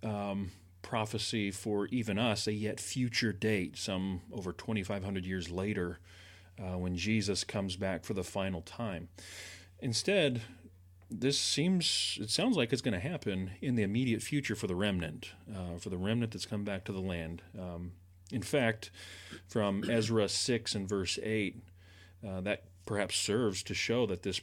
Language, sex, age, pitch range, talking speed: English, male, 40-59, 95-115 Hz, 160 wpm